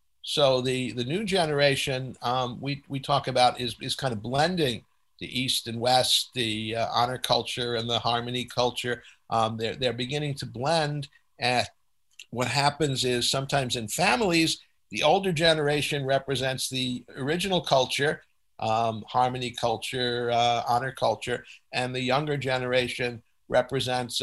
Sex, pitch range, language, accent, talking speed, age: male, 115-130 Hz, English, American, 145 wpm, 50-69